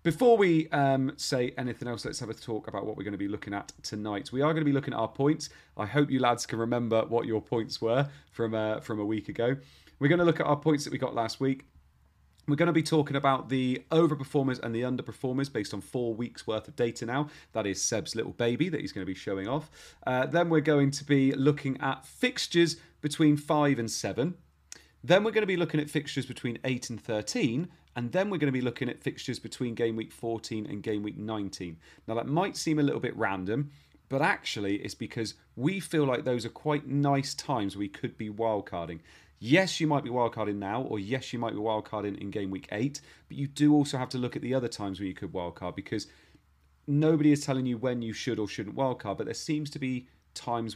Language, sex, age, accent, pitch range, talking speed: English, male, 30-49, British, 105-145 Hz, 240 wpm